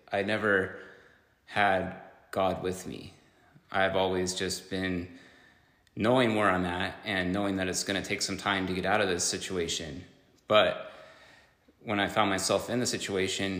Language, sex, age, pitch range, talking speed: English, male, 30-49, 90-100 Hz, 160 wpm